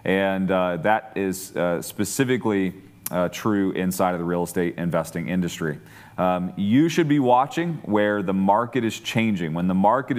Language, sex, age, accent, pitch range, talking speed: English, male, 30-49, American, 90-120 Hz, 165 wpm